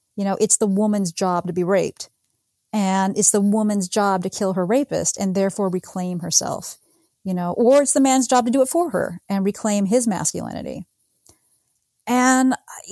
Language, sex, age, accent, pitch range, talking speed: English, female, 30-49, American, 195-255 Hz, 180 wpm